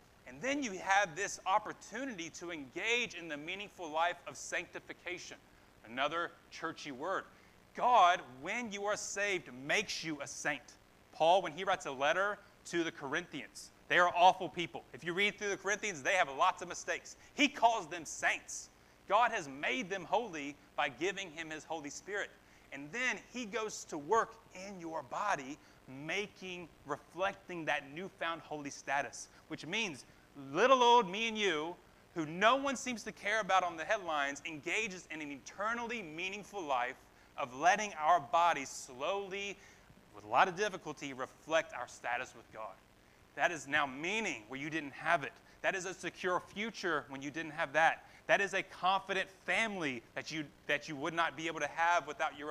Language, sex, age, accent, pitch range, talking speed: English, male, 30-49, American, 150-200 Hz, 175 wpm